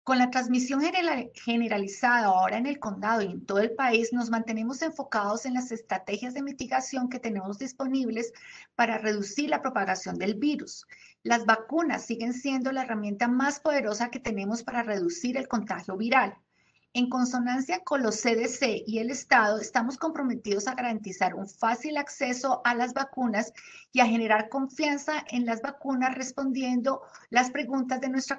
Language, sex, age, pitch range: English, female, 30-49, 220-270 Hz